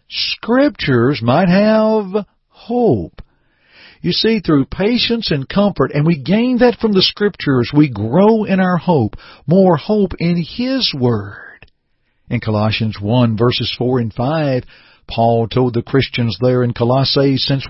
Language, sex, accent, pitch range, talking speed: English, male, American, 120-170 Hz, 140 wpm